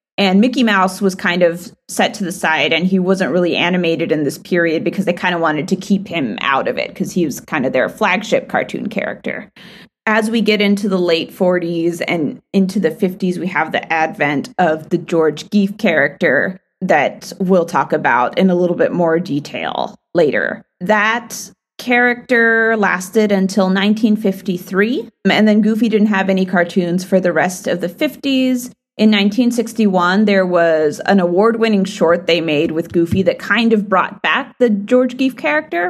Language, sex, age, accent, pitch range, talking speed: English, female, 30-49, American, 180-220 Hz, 180 wpm